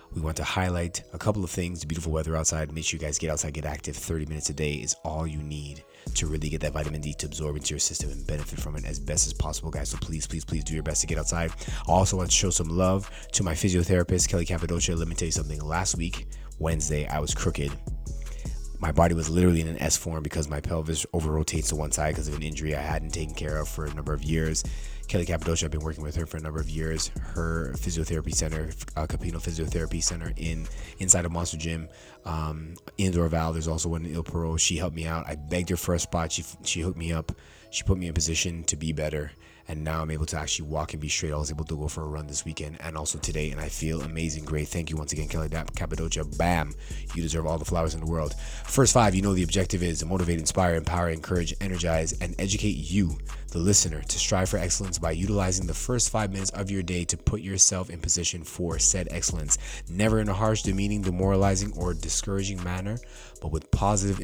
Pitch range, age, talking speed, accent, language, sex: 75-90 Hz, 30-49, 245 wpm, American, English, male